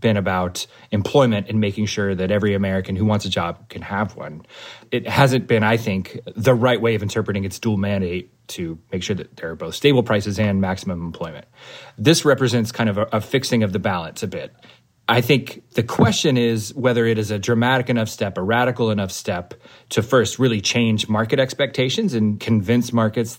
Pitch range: 105-125 Hz